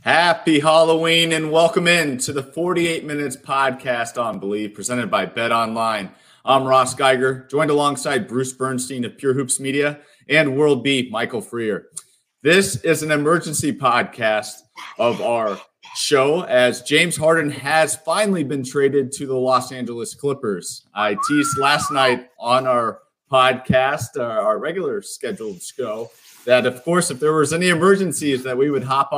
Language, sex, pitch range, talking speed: English, male, 120-155 Hz, 155 wpm